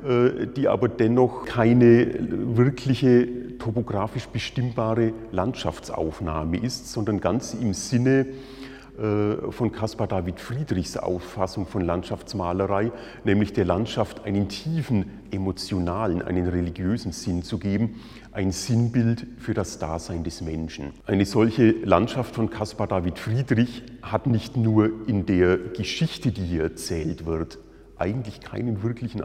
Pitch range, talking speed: 95-120 Hz, 120 wpm